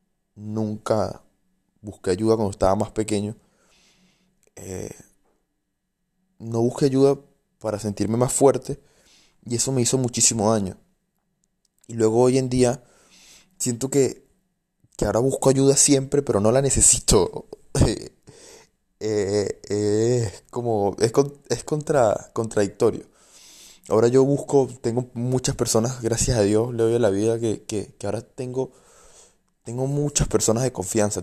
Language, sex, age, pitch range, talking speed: Spanish, male, 20-39, 105-130 Hz, 125 wpm